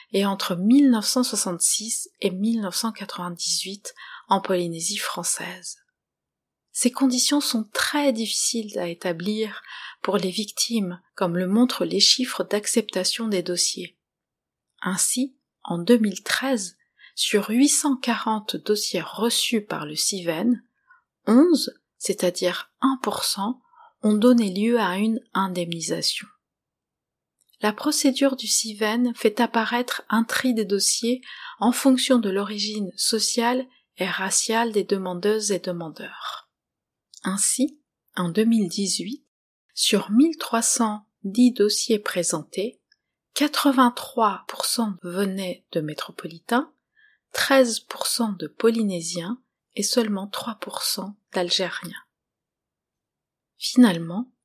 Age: 30-49